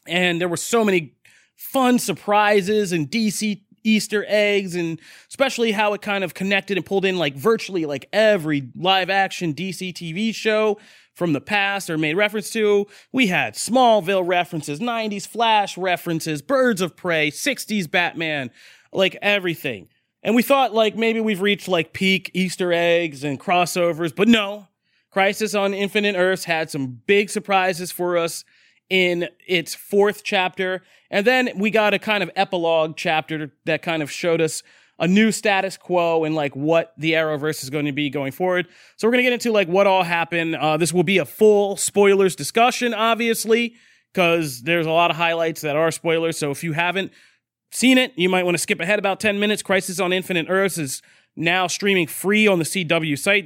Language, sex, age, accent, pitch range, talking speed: English, male, 30-49, American, 165-210 Hz, 185 wpm